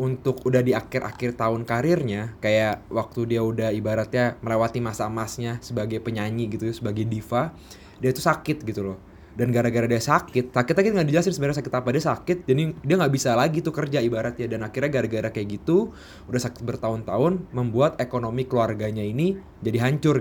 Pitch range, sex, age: 110-130 Hz, male, 20-39